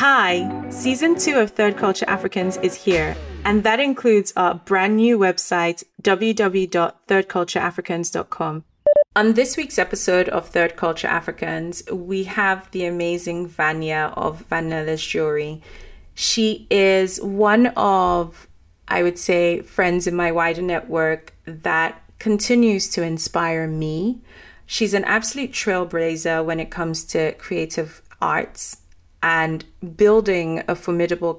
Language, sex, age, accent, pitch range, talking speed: English, female, 30-49, British, 165-200 Hz, 120 wpm